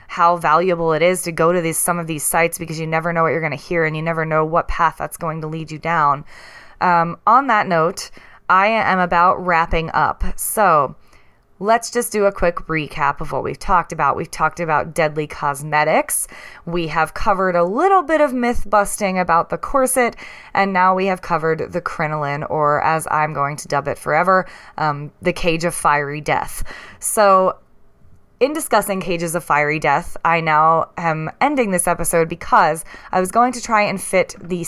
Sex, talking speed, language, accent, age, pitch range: female, 195 wpm, English, American, 20-39, 160-200 Hz